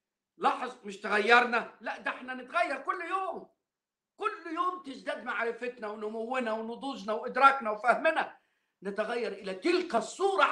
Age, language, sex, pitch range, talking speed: 50-69, Arabic, male, 205-315 Hz, 120 wpm